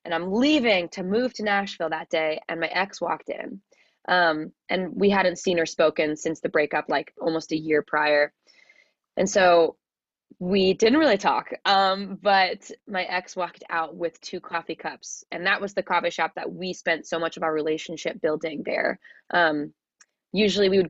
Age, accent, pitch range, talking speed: 20-39, American, 160-190 Hz, 185 wpm